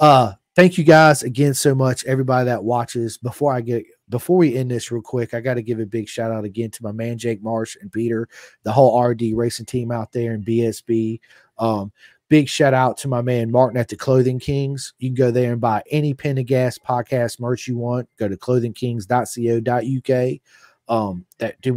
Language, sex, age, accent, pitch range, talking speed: English, male, 30-49, American, 100-125 Hz, 205 wpm